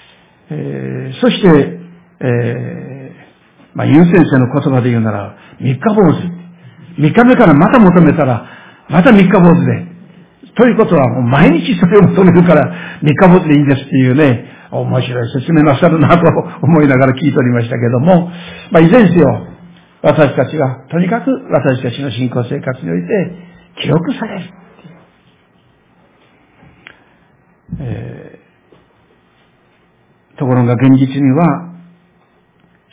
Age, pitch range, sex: 60-79, 130-175 Hz, male